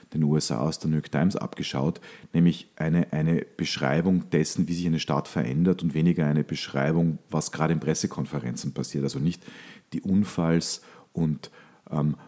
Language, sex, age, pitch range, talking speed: German, male, 40-59, 80-90 Hz, 160 wpm